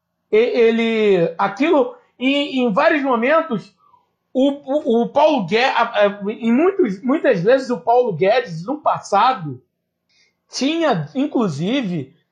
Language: Portuguese